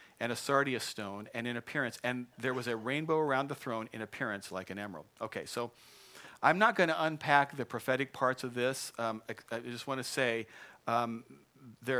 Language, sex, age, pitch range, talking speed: English, male, 50-69, 115-140 Hz, 205 wpm